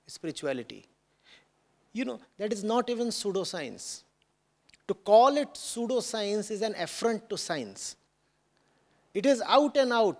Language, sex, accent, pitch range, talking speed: English, male, Indian, 215-265 Hz, 130 wpm